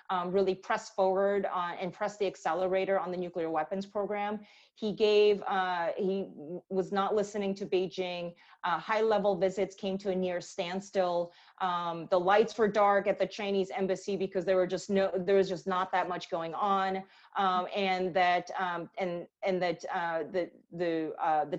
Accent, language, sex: American, English, female